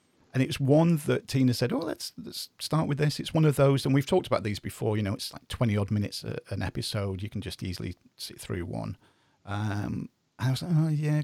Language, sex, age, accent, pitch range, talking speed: English, male, 40-59, British, 100-125 Hz, 240 wpm